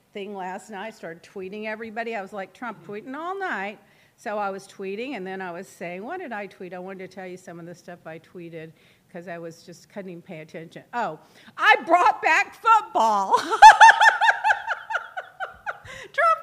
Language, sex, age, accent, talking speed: English, female, 50-69, American, 190 wpm